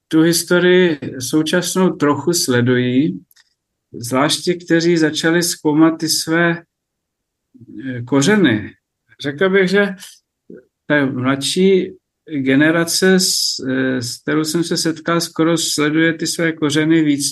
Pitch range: 130-155 Hz